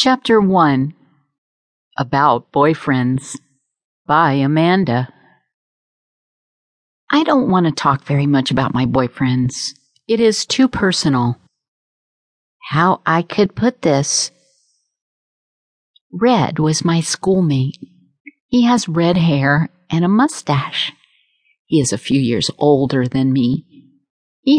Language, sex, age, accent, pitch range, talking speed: English, female, 50-69, American, 135-185 Hz, 110 wpm